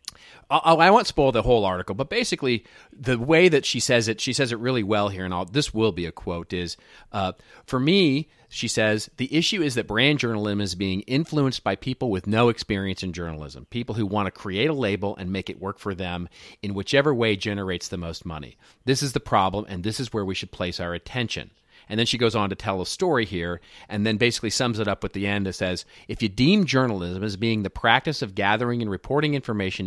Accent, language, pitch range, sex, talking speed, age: American, English, 95-125 Hz, male, 230 wpm, 40-59